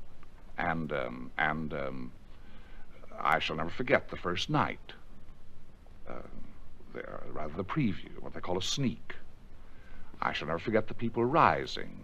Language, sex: English, male